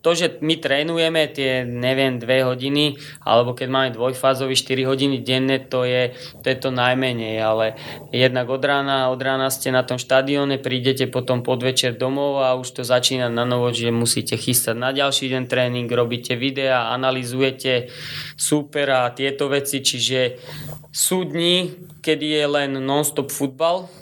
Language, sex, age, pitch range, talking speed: Slovak, male, 20-39, 125-140 Hz, 155 wpm